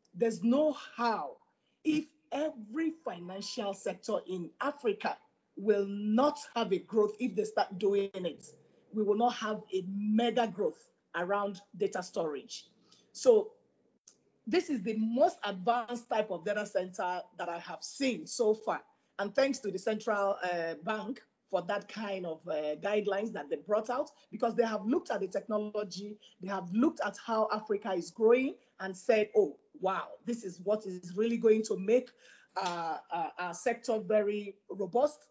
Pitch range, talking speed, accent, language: 195-245 Hz, 160 wpm, Nigerian, English